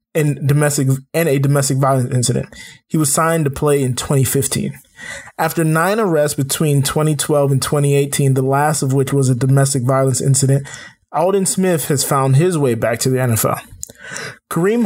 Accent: American